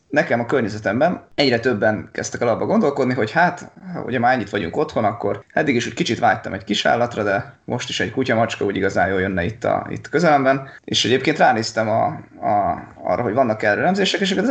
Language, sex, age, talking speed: Hungarian, male, 20-39, 195 wpm